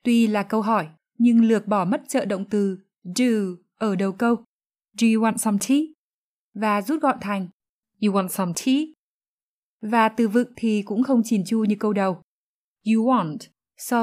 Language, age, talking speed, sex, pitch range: Vietnamese, 20-39, 180 wpm, female, 205-250 Hz